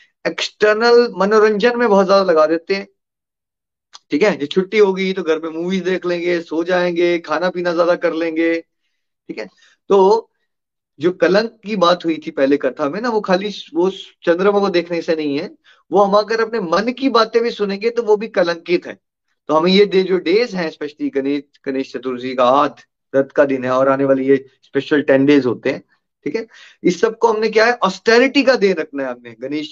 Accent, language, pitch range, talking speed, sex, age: native, Hindi, 150-205 Hz, 205 wpm, male, 30-49